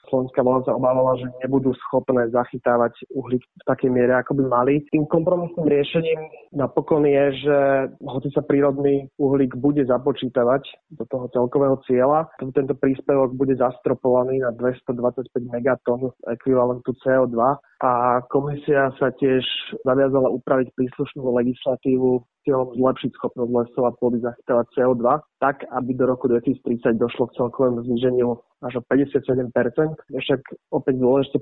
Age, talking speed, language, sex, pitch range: 30-49, 140 wpm, Slovak, male, 125-140 Hz